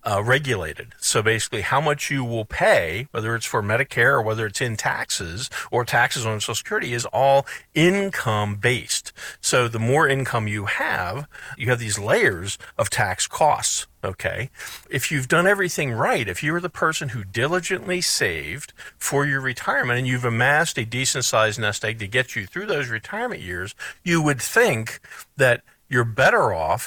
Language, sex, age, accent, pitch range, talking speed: English, male, 50-69, American, 105-135 Hz, 170 wpm